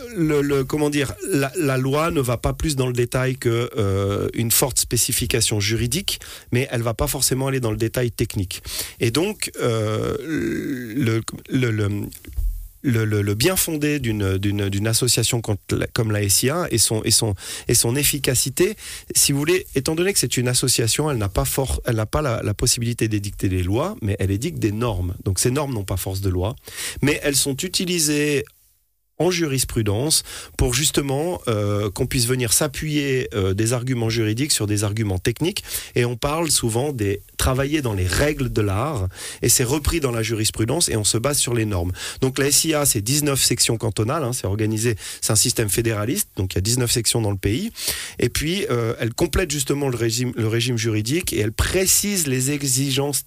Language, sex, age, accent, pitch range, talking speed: French, male, 40-59, French, 110-140 Hz, 195 wpm